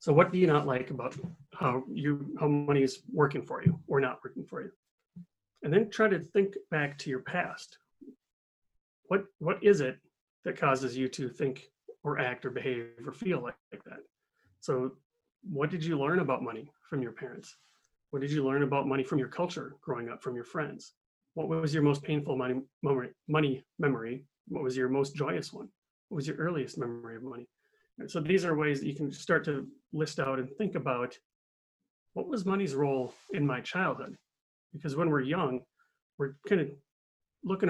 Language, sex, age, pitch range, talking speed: English, male, 30-49, 130-165 Hz, 195 wpm